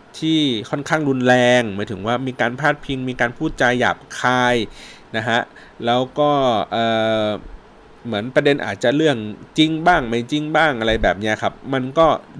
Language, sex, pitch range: Thai, male, 110-150 Hz